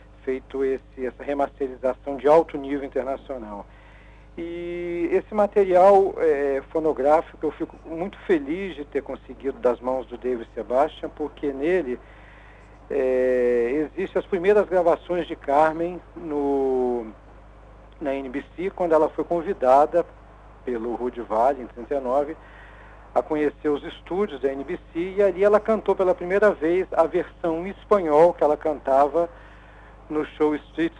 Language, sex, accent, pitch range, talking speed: Portuguese, male, Brazilian, 130-180 Hz, 130 wpm